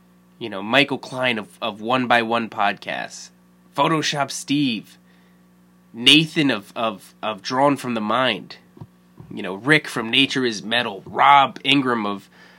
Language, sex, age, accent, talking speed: English, male, 20-39, American, 145 wpm